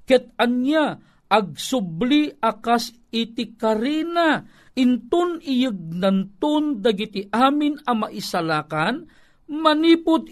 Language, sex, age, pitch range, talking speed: Filipino, male, 50-69, 175-250 Hz, 80 wpm